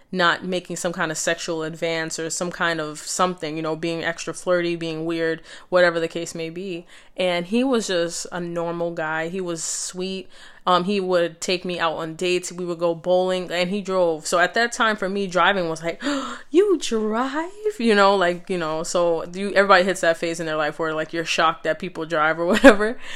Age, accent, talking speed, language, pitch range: 20-39, American, 220 wpm, English, 165-200 Hz